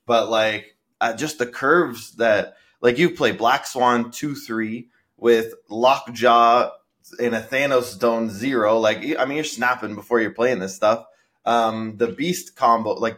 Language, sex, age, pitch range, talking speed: English, male, 20-39, 100-120 Hz, 170 wpm